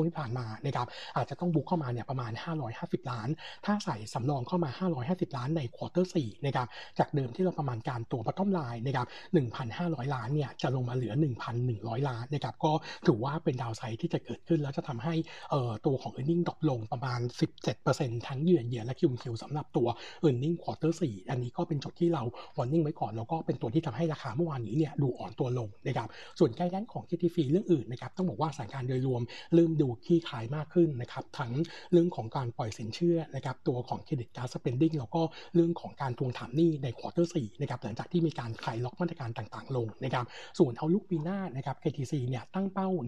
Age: 60-79